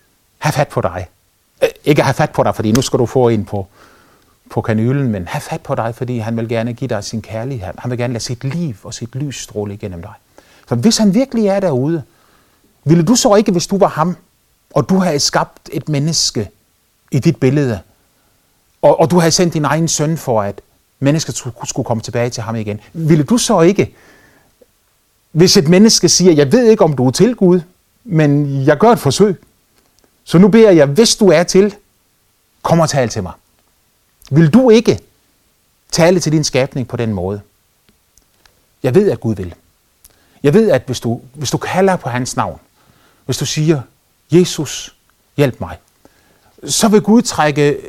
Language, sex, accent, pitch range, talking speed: Danish, male, native, 115-180 Hz, 190 wpm